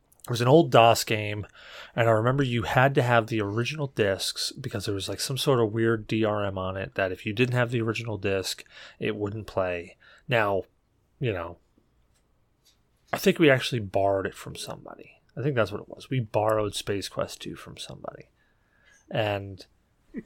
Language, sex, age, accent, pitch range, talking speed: English, male, 30-49, American, 100-120 Hz, 190 wpm